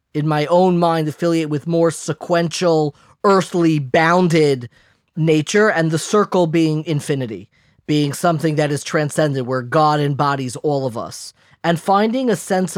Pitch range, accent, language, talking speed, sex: 150-185 Hz, American, English, 145 wpm, male